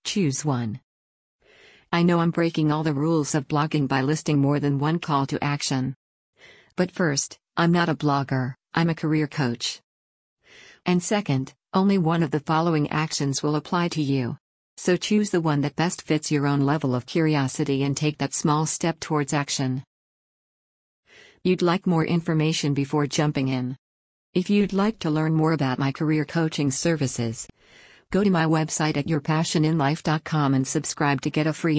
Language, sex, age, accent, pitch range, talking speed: English, female, 50-69, American, 140-165 Hz, 170 wpm